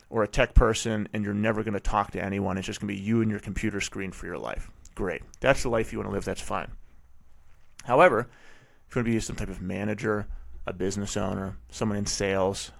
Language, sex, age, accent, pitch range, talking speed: English, male, 30-49, American, 95-120 Hz, 240 wpm